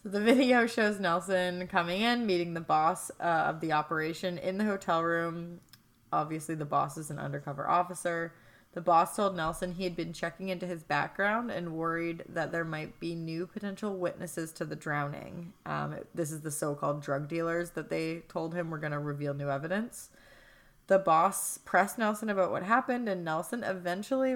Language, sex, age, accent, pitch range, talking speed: English, female, 20-39, American, 160-195 Hz, 180 wpm